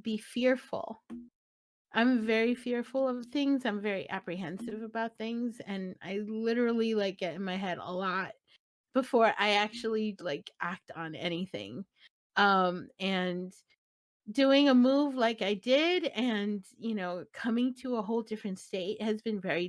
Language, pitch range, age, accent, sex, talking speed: English, 190-240 Hz, 30-49, American, female, 150 wpm